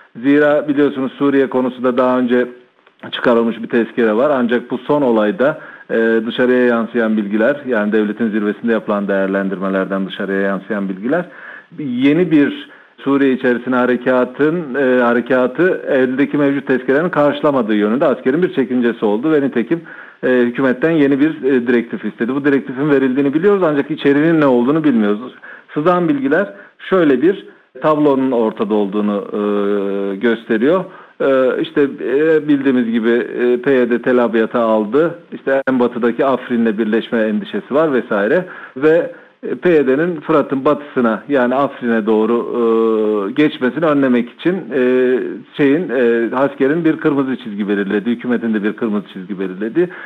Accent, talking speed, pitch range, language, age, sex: native, 130 wpm, 115-145 Hz, Turkish, 40-59, male